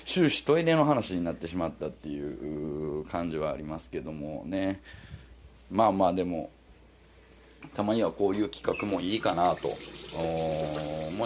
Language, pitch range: Japanese, 85-125 Hz